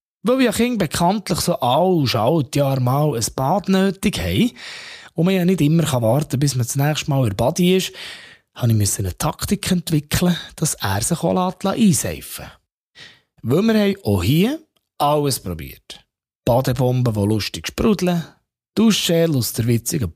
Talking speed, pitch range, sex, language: 155 wpm, 115-180 Hz, male, German